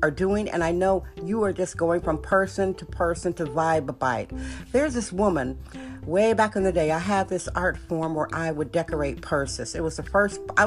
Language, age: English, 50-69